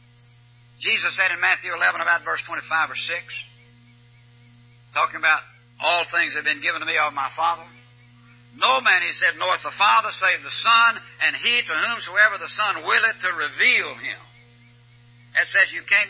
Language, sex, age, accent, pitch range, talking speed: English, male, 60-79, American, 120-170 Hz, 170 wpm